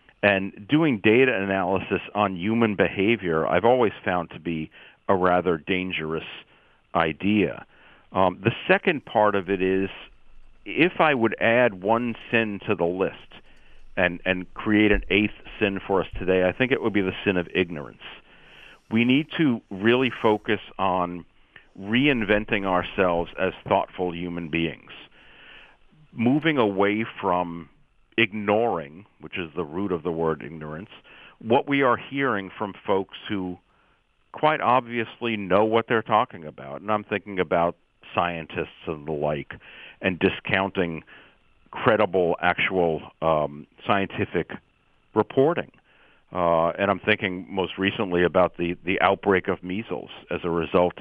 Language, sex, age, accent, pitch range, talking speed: English, male, 40-59, American, 85-105 Hz, 140 wpm